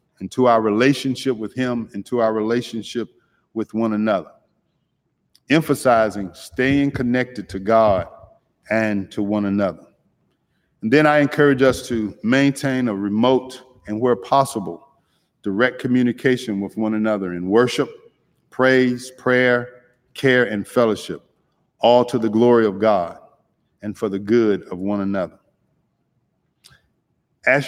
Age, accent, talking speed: 50-69, American, 130 wpm